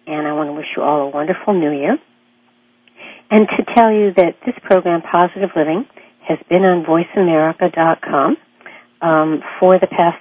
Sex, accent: female, American